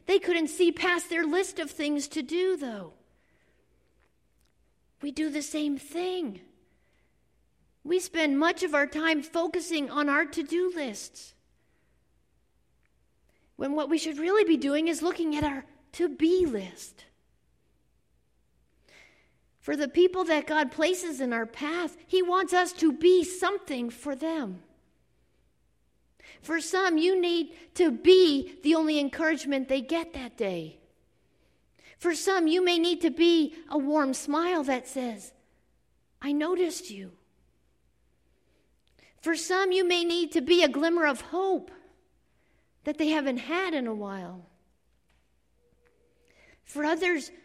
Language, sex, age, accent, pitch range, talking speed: English, female, 50-69, American, 225-340 Hz, 135 wpm